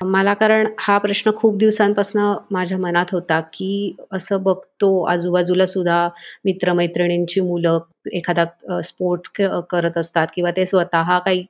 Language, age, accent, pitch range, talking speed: Marathi, 30-49, native, 170-195 Hz, 125 wpm